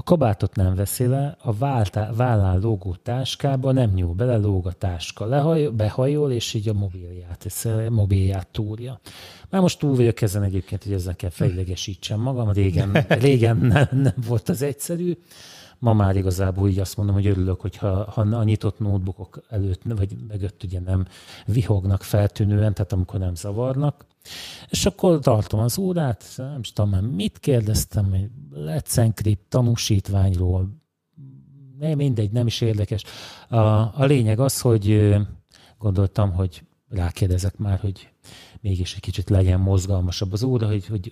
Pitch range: 95-125 Hz